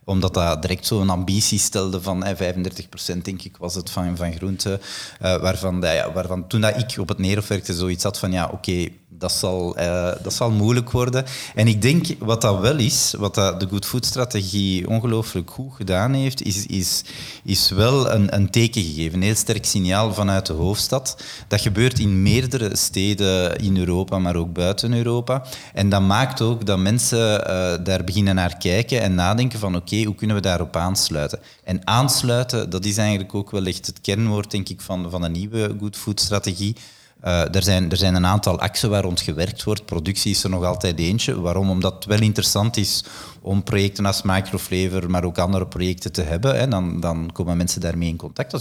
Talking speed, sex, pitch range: 200 wpm, male, 90-110 Hz